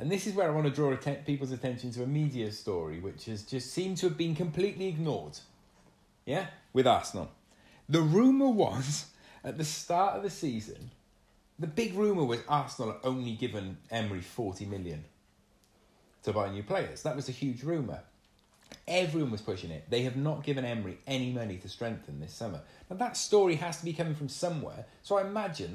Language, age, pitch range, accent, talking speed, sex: English, 30-49, 110-170 Hz, British, 190 wpm, male